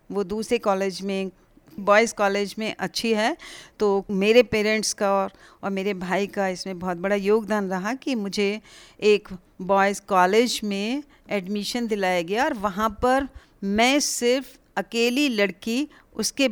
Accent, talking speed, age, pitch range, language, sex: native, 145 wpm, 50-69, 195-240 Hz, Hindi, female